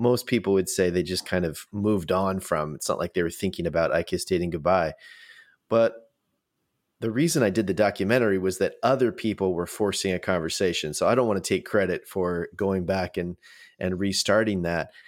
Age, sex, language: 30-49, male, English